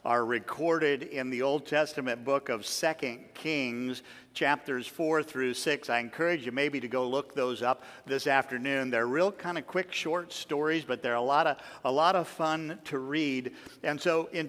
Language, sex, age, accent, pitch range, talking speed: English, male, 50-69, American, 145-180 Hz, 190 wpm